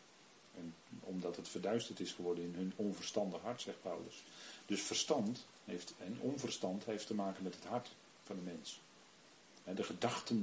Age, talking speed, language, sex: 40-59, 165 wpm, Dutch, male